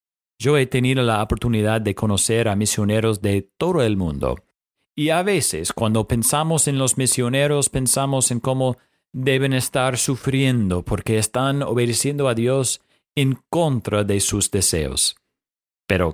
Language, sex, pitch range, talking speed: Spanish, male, 105-145 Hz, 140 wpm